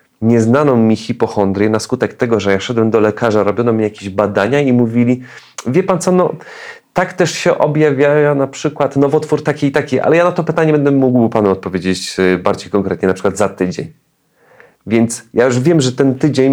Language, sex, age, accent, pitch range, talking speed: Polish, male, 40-59, native, 100-125 Hz, 190 wpm